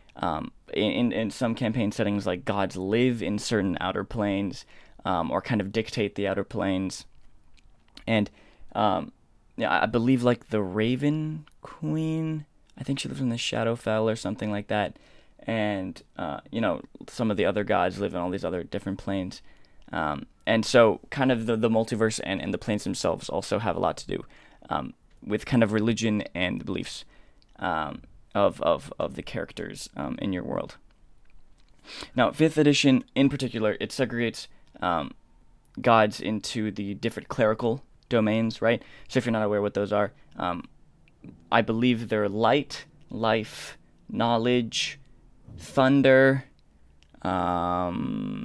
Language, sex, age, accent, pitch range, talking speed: English, male, 10-29, American, 100-120 Hz, 155 wpm